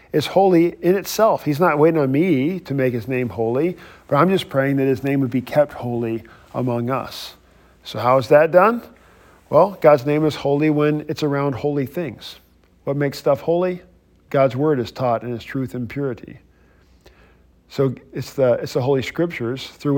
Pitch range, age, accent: 115-150 Hz, 50-69, American